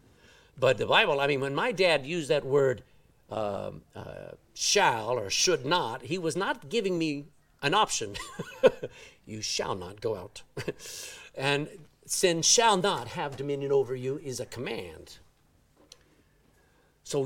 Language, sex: English, male